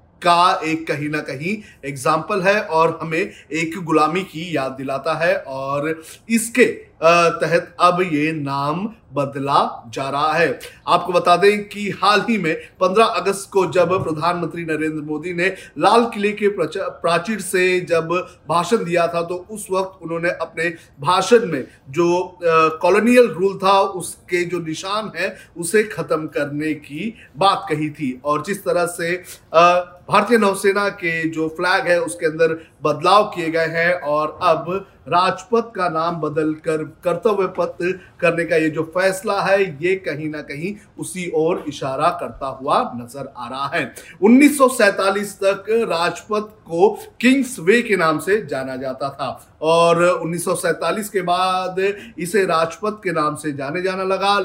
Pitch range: 160-195 Hz